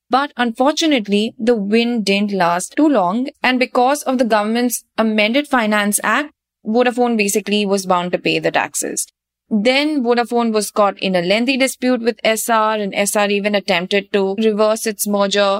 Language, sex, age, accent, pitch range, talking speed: English, female, 20-39, Indian, 200-245 Hz, 160 wpm